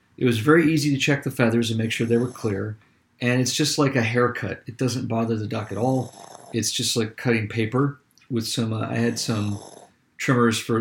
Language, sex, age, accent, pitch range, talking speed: English, male, 40-59, American, 115-130 Hz, 220 wpm